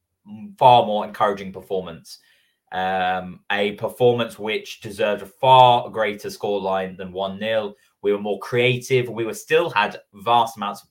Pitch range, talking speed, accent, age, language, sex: 95-125 Hz, 150 wpm, British, 20-39, English, male